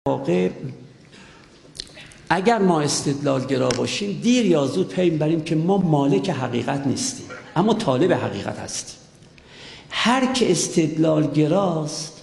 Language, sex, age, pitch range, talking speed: Persian, male, 50-69, 125-175 Hz, 105 wpm